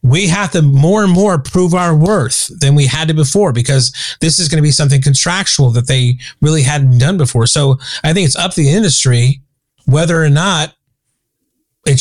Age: 30-49